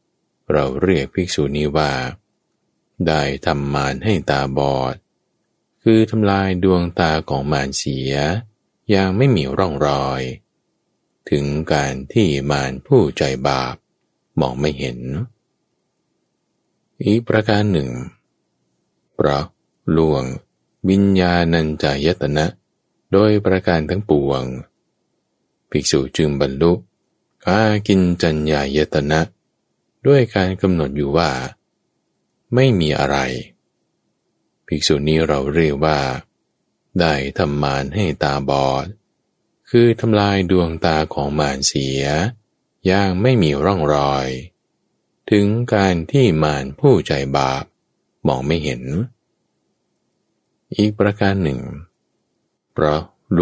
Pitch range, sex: 70-95 Hz, male